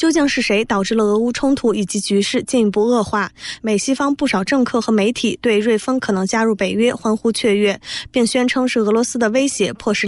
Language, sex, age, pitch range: Chinese, female, 20-39, 205-245 Hz